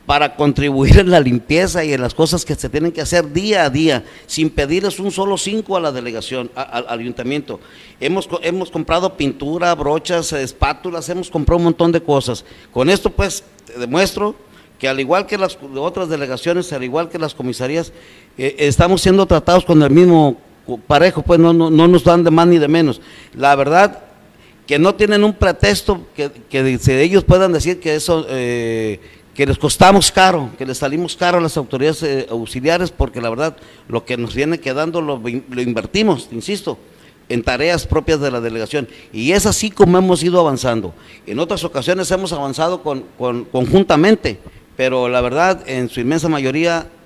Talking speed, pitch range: 180 wpm, 130-175 Hz